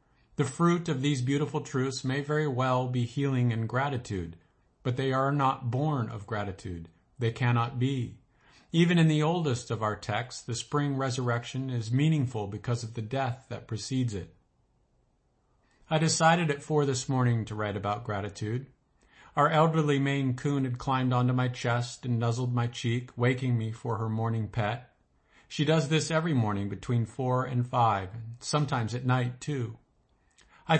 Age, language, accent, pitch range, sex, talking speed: 50-69, English, American, 115-140 Hz, male, 165 wpm